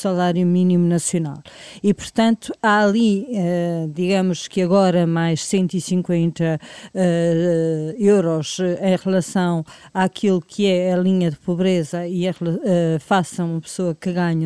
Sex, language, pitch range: female, Portuguese, 175-205 Hz